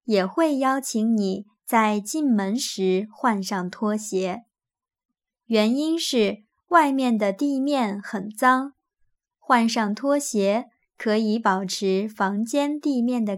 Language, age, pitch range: Chinese, 20-39, 205-270 Hz